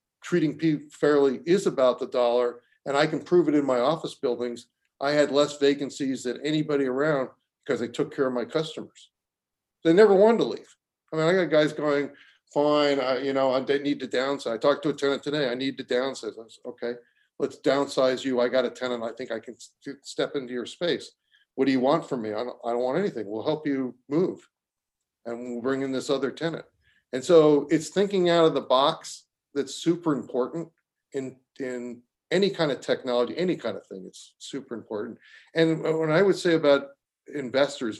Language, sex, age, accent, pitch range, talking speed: English, male, 40-59, American, 125-155 Hz, 205 wpm